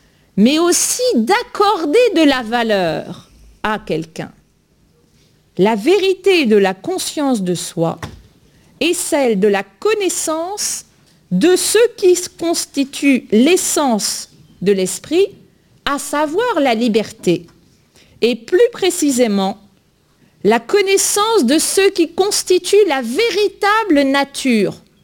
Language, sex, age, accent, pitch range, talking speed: French, female, 50-69, French, 225-370 Hz, 105 wpm